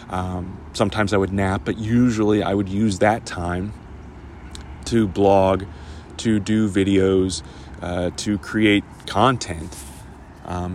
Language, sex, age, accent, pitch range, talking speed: English, male, 30-49, American, 90-110 Hz, 125 wpm